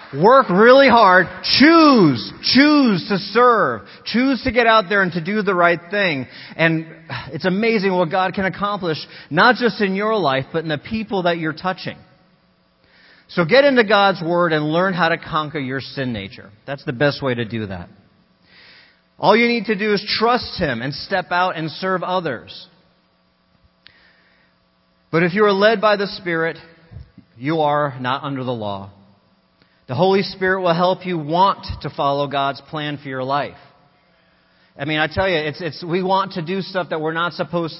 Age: 40-59